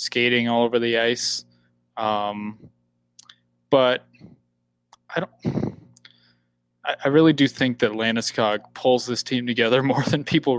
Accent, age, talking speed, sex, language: American, 20-39, 130 wpm, male, English